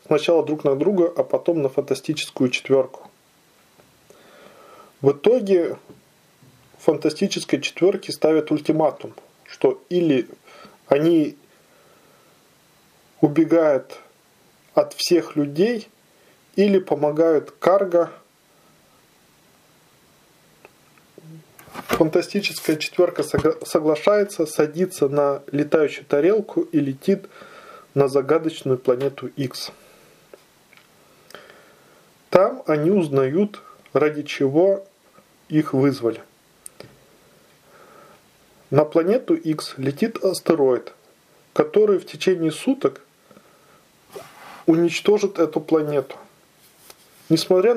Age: 20-39